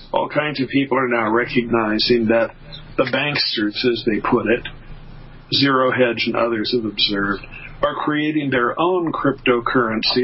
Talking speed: 145 wpm